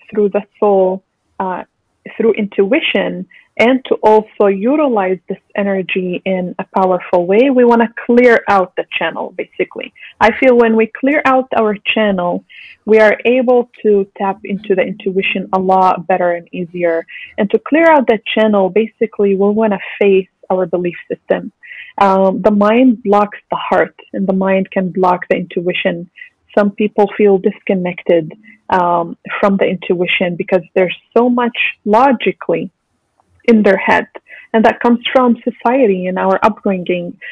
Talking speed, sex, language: 155 wpm, female, English